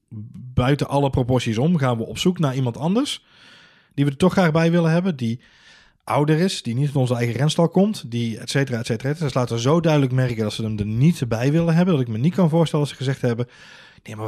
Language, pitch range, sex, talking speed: Dutch, 110-145 Hz, male, 250 wpm